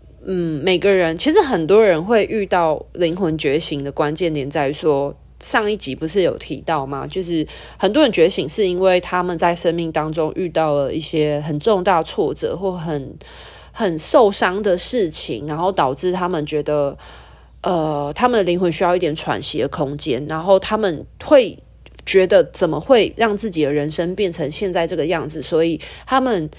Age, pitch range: 20-39, 155-200 Hz